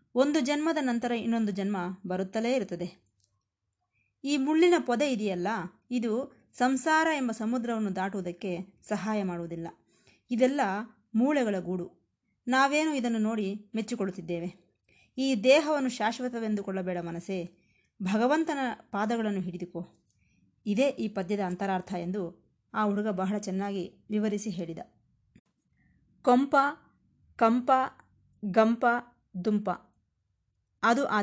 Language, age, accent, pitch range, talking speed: Kannada, 20-39, native, 185-255 Hz, 95 wpm